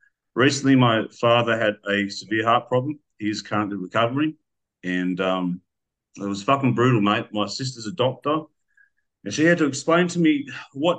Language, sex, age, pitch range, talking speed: English, male, 40-59, 105-140 Hz, 165 wpm